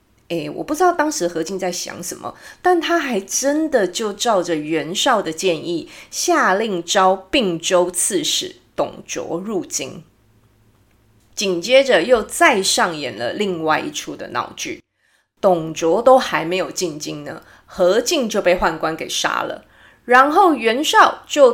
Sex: female